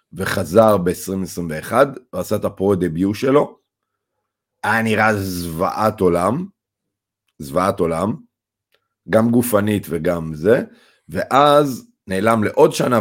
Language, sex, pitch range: Hebrew, male, 85-110 Hz